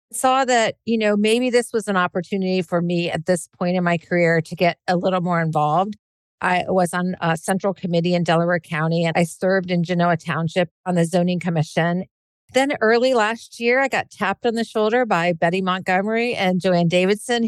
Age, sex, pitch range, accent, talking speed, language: 50-69, female, 175-205 Hz, American, 200 wpm, English